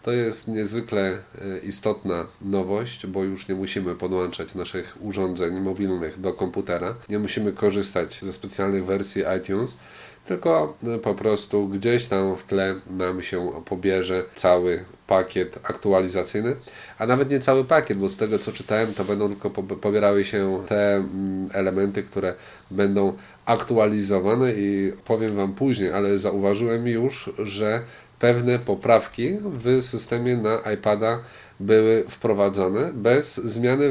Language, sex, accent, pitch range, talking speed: Polish, male, native, 100-120 Hz, 130 wpm